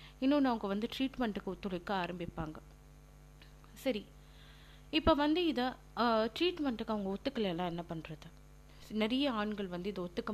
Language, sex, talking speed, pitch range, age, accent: Tamil, female, 115 wpm, 180-230 Hz, 30-49, native